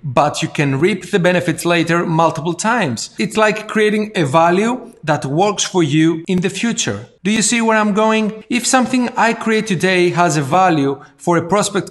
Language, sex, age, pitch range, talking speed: Greek, male, 40-59, 160-205 Hz, 190 wpm